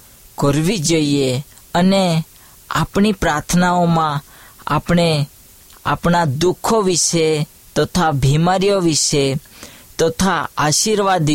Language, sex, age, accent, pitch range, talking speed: Hindi, female, 20-39, native, 140-175 Hz, 70 wpm